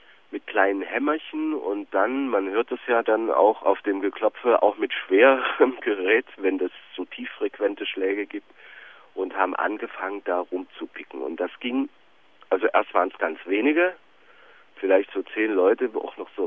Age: 40-59